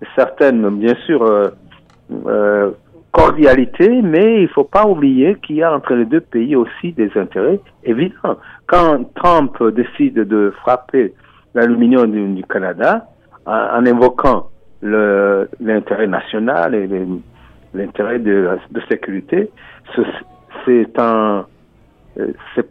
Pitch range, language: 95-125 Hz, French